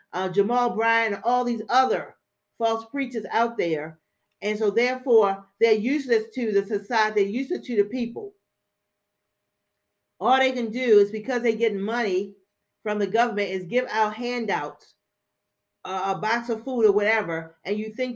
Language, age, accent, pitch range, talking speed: English, 50-69, American, 200-235 Hz, 165 wpm